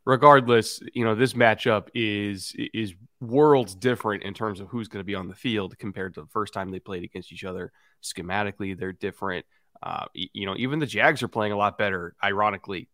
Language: English